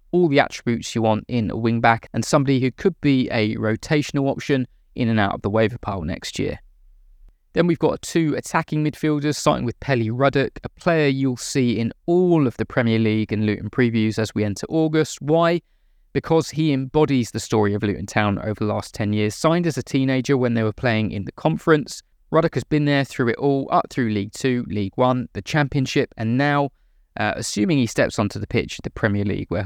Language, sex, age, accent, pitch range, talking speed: English, male, 20-39, British, 105-145 Hz, 215 wpm